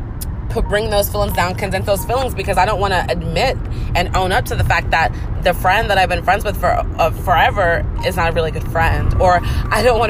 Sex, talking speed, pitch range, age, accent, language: female, 240 wpm, 95-110 Hz, 30-49, American, English